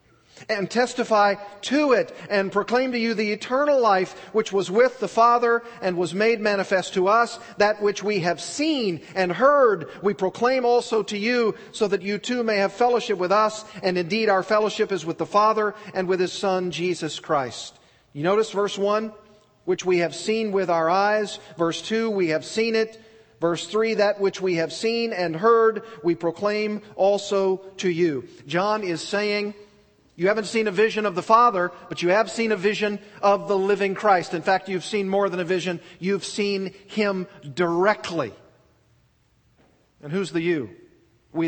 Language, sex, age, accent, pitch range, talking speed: English, male, 40-59, American, 180-215 Hz, 180 wpm